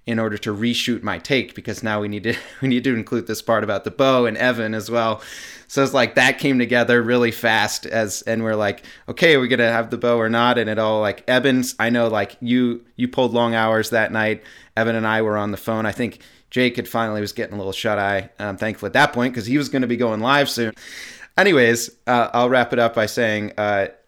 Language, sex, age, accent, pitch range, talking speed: English, male, 30-49, American, 105-125 Hz, 250 wpm